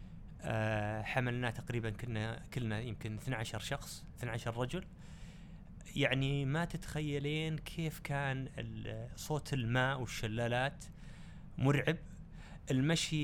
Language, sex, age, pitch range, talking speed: Arabic, male, 30-49, 120-150 Hz, 85 wpm